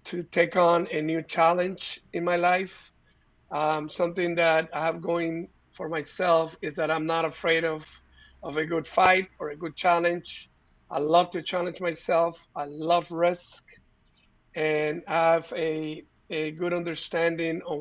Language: English